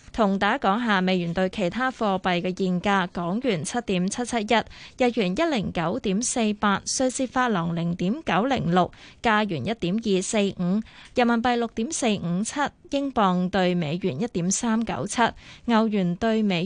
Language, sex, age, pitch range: Chinese, female, 20-39, 185-235 Hz